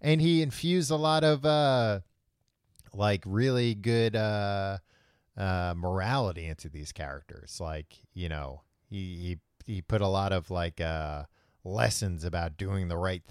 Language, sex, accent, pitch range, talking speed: English, male, American, 90-120 Hz, 145 wpm